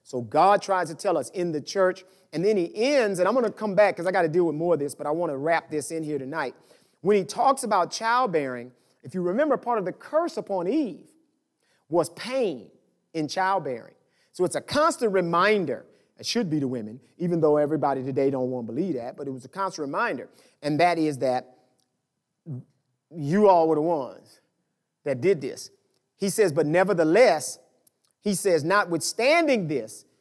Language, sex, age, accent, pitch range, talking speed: English, male, 40-59, American, 150-215 Hz, 200 wpm